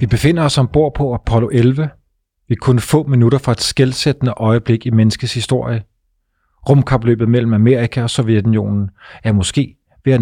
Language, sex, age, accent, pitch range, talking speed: Danish, male, 30-49, native, 100-125 Hz, 160 wpm